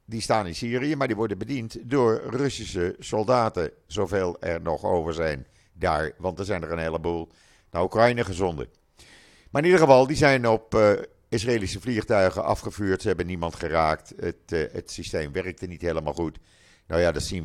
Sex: male